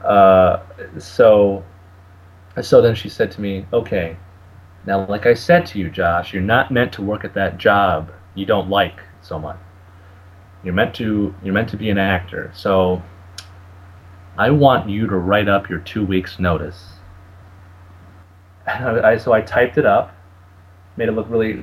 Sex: male